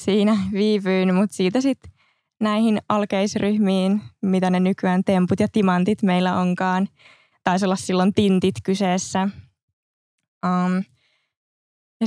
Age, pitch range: 20-39, 180-210 Hz